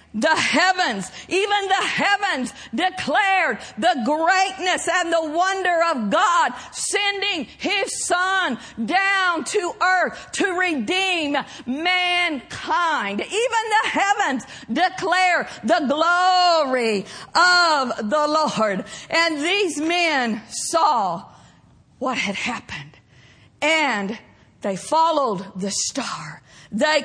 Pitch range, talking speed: 250-355 Hz, 100 wpm